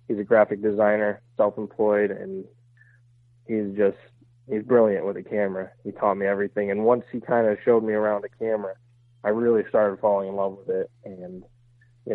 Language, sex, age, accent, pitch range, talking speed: English, male, 20-39, American, 105-120 Hz, 185 wpm